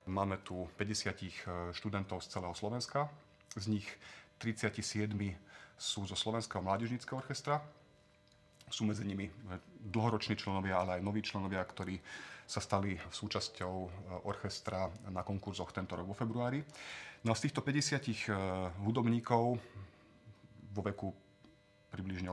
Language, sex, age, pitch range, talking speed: Slovak, male, 30-49, 95-110 Hz, 115 wpm